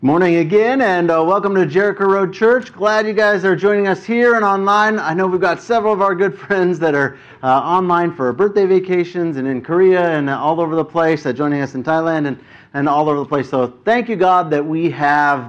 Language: English